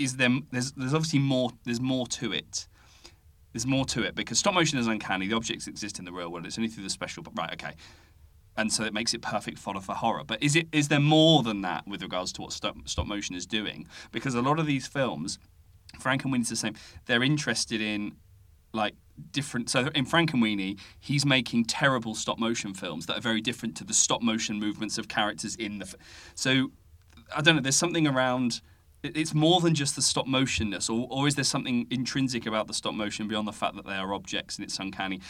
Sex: male